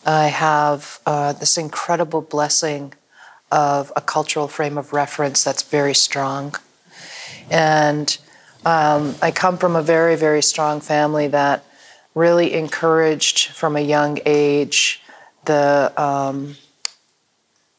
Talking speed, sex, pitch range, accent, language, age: 115 wpm, female, 145-155 Hz, American, English, 40-59